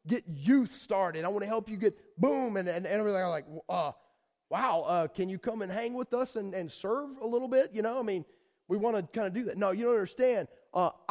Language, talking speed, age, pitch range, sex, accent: English, 255 wpm, 30-49, 160-215 Hz, male, American